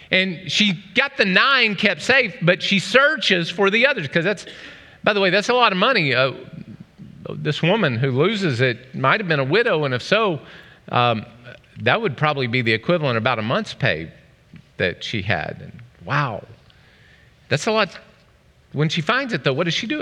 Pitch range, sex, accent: 125-185 Hz, male, American